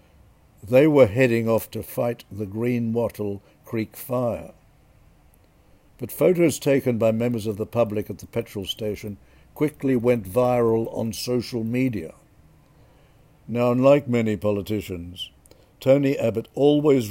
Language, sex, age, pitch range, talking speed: English, male, 60-79, 105-125 Hz, 125 wpm